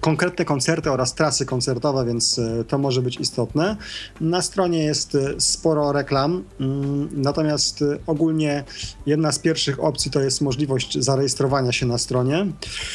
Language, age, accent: Polish, 30-49, native